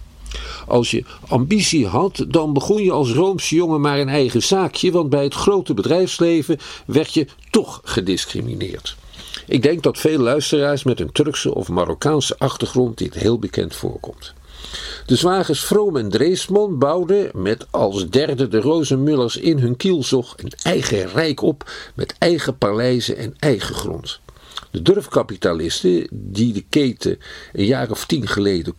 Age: 50-69